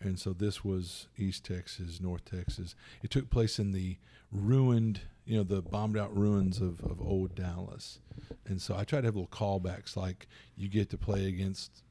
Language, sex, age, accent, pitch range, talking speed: English, male, 40-59, American, 90-105 Hz, 190 wpm